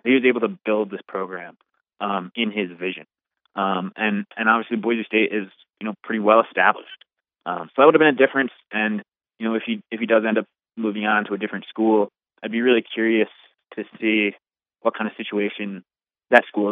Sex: male